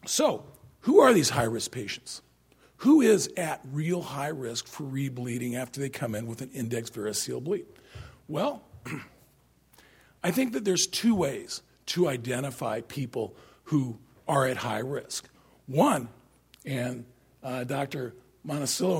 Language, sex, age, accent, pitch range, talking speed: English, male, 50-69, American, 120-150 Hz, 135 wpm